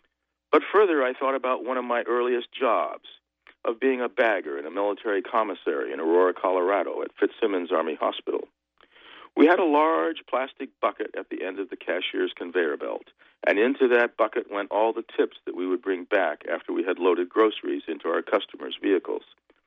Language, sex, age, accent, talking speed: English, male, 50-69, American, 185 wpm